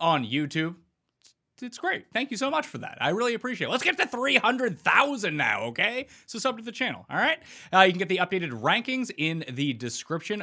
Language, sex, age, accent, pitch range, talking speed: English, male, 30-49, American, 130-210 Hz, 215 wpm